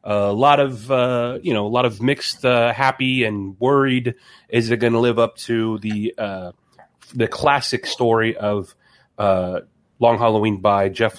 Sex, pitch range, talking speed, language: male, 105-125 Hz, 175 wpm, English